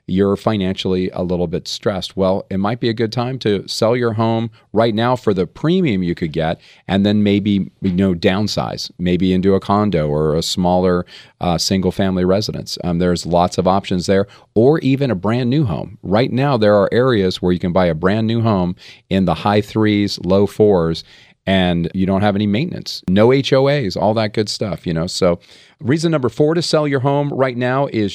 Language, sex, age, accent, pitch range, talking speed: English, male, 40-59, American, 95-120 Hz, 205 wpm